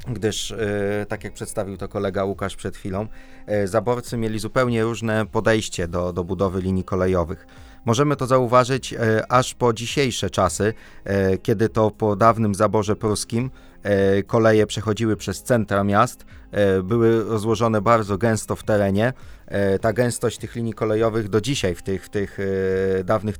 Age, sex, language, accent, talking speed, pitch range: 30-49, male, Polish, native, 140 wpm, 100-115 Hz